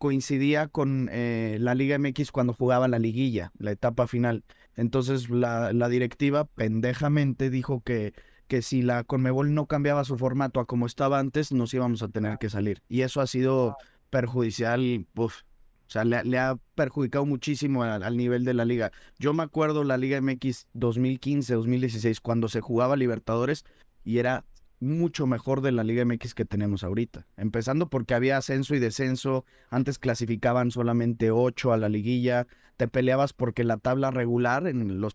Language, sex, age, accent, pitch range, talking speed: English, male, 20-39, Mexican, 115-135 Hz, 170 wpm